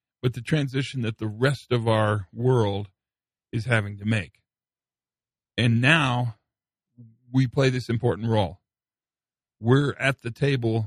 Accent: American